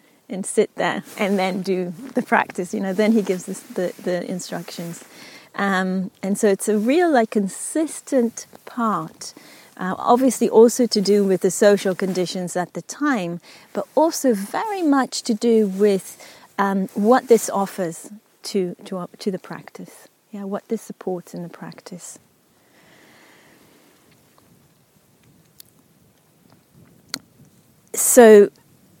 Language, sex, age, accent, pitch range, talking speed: English, female, 30-49, British, 190-240 Hz, 130 wpm